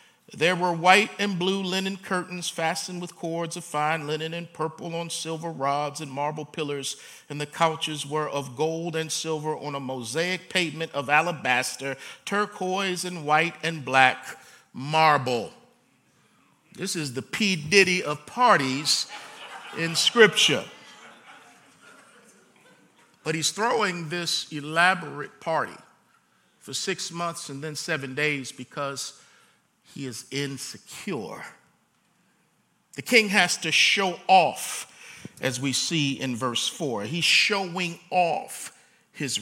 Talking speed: 125 wpm